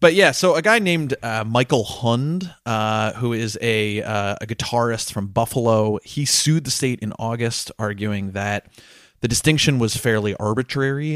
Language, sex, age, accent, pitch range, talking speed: English, male, 30-49, American, 105-125 Hz, 165 wpm